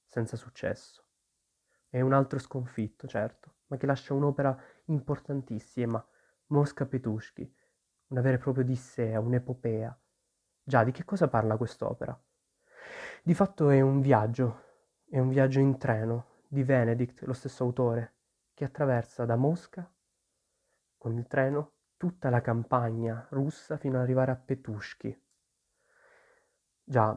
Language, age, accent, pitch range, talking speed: Italian, 20-39, native, 120-140 Hz, 125 wpm